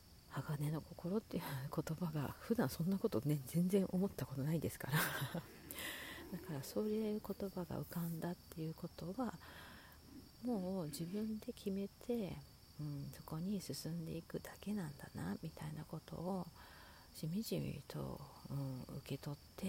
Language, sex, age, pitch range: Japanese, female, 40-59, 150-190 Hz